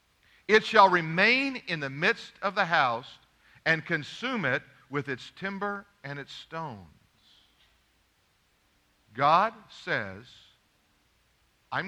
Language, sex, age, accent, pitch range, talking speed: English, male, 50-69, American, 100-145 Hz, 105 wpm